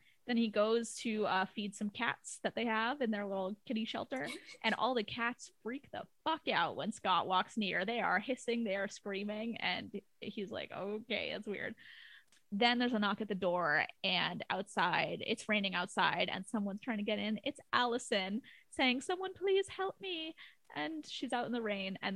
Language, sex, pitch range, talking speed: English, female, 190-230 Hz, 195 wpm